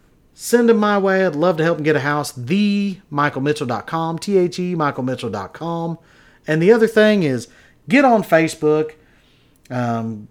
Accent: American